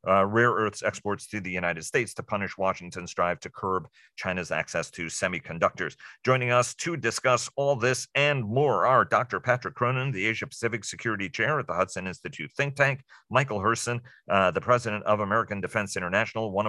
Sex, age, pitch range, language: male, 40-59, 95-120 Hz, English